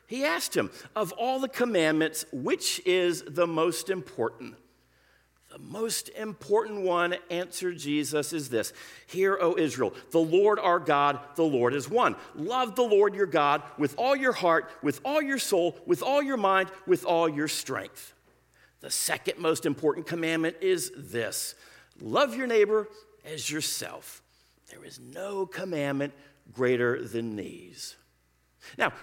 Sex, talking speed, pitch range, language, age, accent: male, 150 wpm, 135-180 Hz, English, 50-69, American